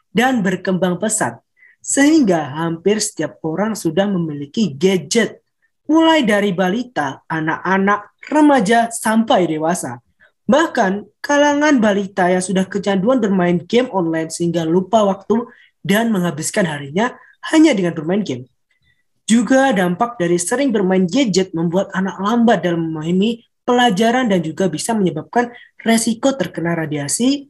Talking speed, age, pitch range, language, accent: 120 wpm, 20-39, 175-245 Hz, Indonesian, native